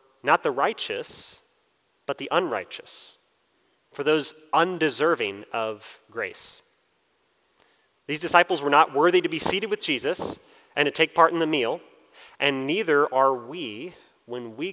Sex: male